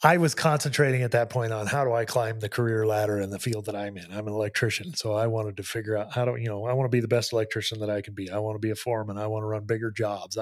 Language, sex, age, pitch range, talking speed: English, male, 30-49, 110-135 Hz, 325 wpm